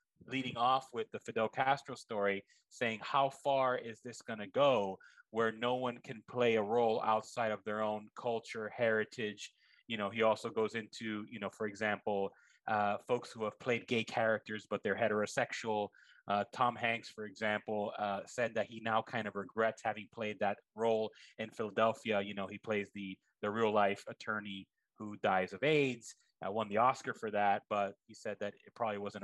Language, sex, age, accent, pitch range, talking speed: English, male, 30-49, American, 105-125 Hz, 190 wpm